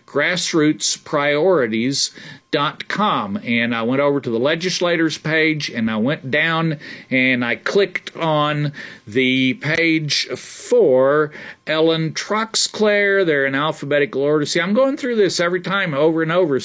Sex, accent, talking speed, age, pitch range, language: male, American, 130 wpm, 50-69, 135-180 Hz, English